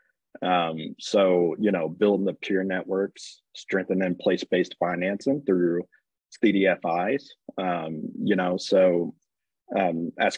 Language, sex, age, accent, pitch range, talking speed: English, male, 30-49, American, 85-100 Hz, 110 wpm